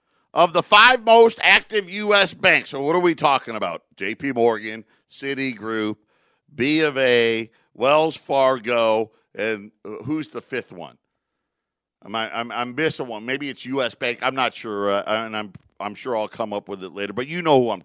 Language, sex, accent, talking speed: English, male, American, 180 wpm